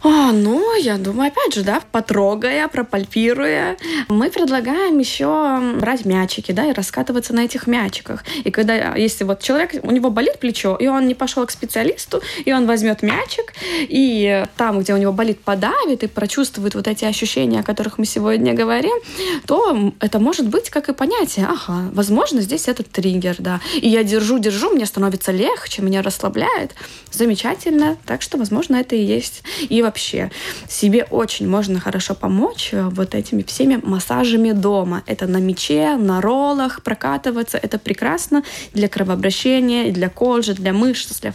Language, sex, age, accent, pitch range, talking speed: Russian, female, 20-39, native, 205-280 Hz, 165 wpm